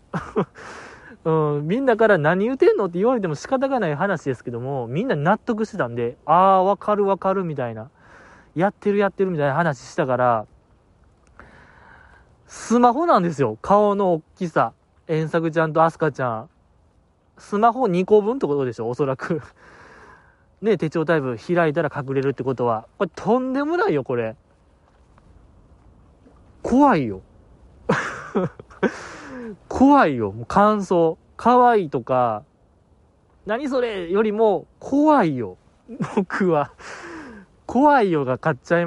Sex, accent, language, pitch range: male, native, Japanese, 130-220 Hz